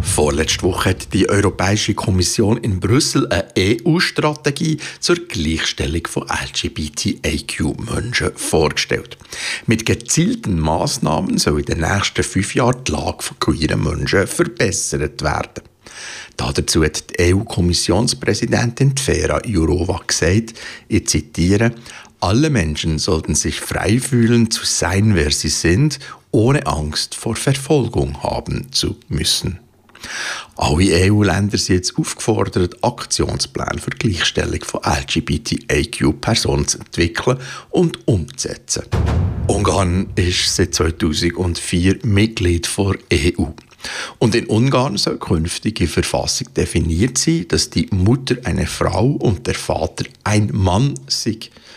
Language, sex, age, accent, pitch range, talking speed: German, male, 60-79, Austrian, 85-115 Hz, 115 wpm